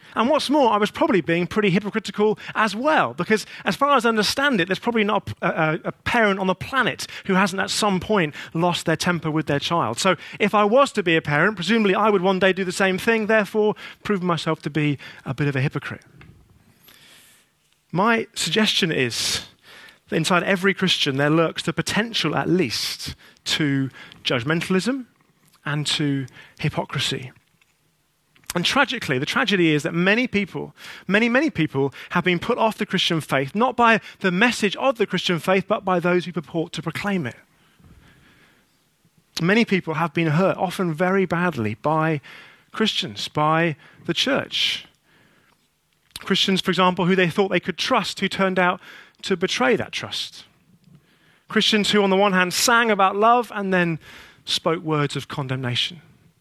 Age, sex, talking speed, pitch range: 30-49, male, 170 wpm, 155-205 Hz